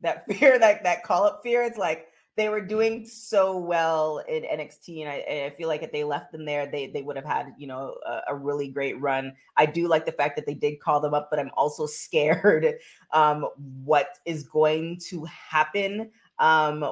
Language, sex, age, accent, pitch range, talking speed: English, female, 20-39, American, 150-185 Hz, 215 wpm